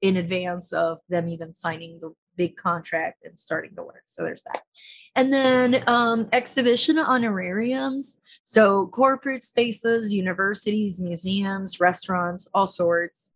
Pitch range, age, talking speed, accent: 175-220 Hz, 20-39, 130 wpm, American